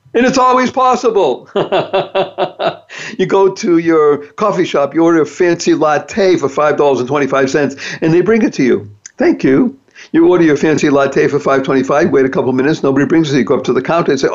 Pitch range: 135-225 Hz